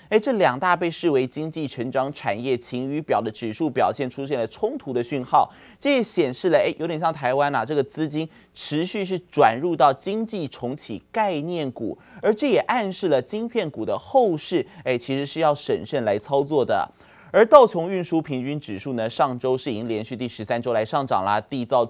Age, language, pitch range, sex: 30-49, Chinese, 120-170 Hz, male